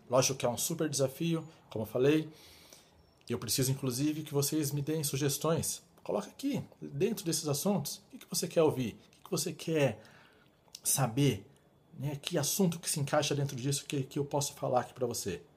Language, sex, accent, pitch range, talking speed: Portuguese, male, Brazilian, 120-150 Hz, 175 wpm